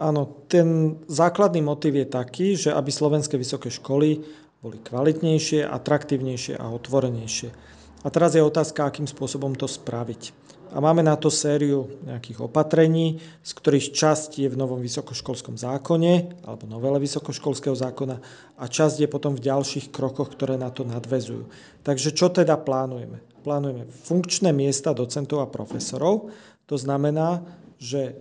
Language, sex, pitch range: Slovak, male, 135-155 Hz